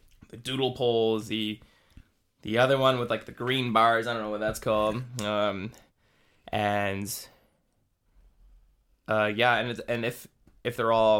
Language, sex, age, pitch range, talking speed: English, male, 10-29, 105-125 Hz, 155 wpm